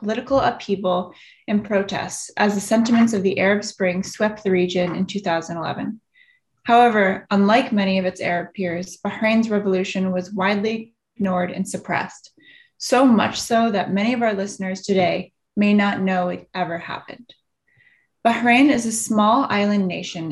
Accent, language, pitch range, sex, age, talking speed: American, English, 185-220 Hz, female, 20-39, 150 wpm